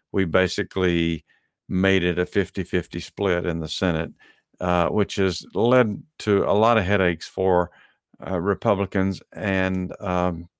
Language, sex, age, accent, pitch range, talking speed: English, male, 50-69, American, 85-100 Hz, 135 wpm